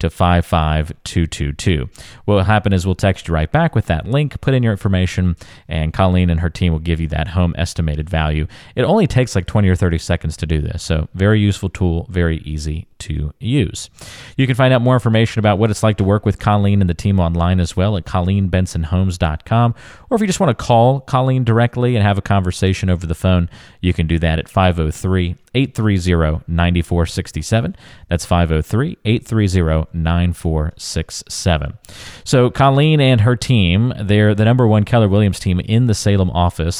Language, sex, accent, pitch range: English, male, American, 85-115 Hz